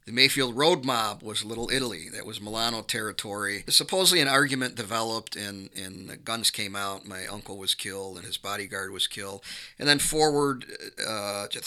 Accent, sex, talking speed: American, male, 175 wpm